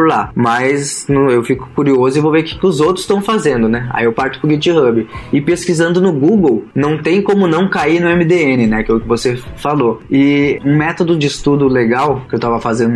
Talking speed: 230 wpm